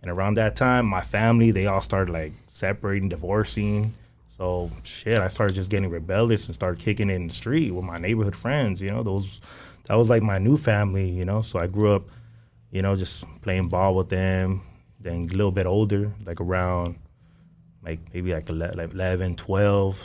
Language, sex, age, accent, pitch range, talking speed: English, male, 20-39, American, 90-110 Hz, 190 wpm